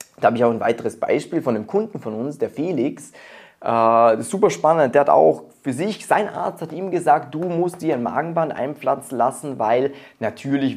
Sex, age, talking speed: male, 20-39, 210 wpm